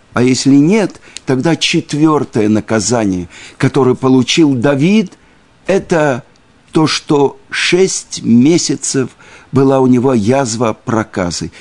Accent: native